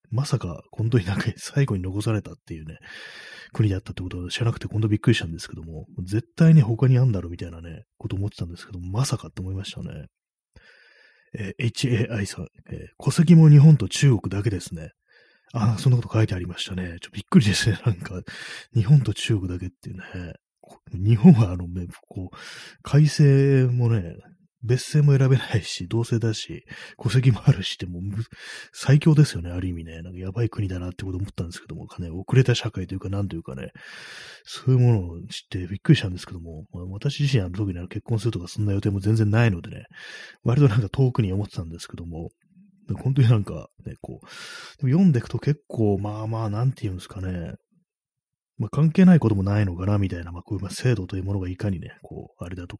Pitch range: 95-130 Hz